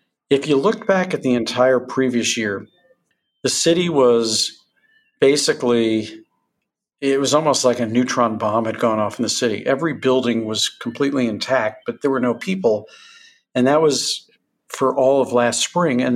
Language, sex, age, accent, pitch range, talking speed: English, male, 50-69, American, 115-140 Hz, 165 wpm